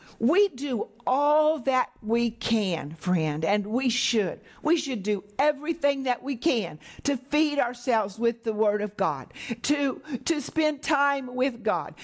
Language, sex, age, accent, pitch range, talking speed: English, female, 50-69, American, 220-290 Hz, 155 wpm